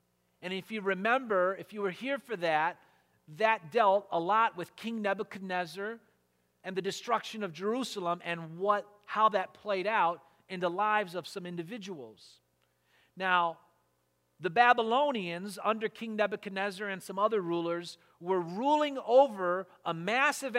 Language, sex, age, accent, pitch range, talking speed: English, male, 40-59, American, 165-230 Hz, 145 wpm